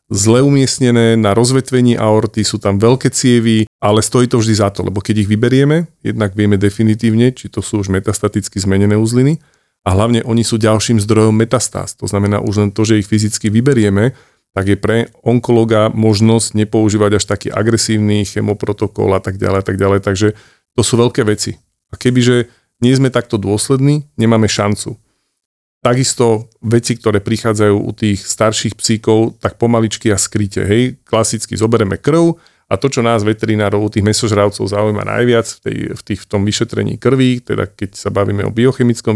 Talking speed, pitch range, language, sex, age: 175 wpm, 100-120 Hz, Slovak, male, 40-59